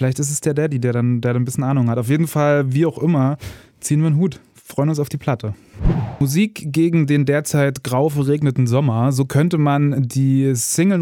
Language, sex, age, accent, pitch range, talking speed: German, male, 20-39, German, 125-155 Hz, 215 wpm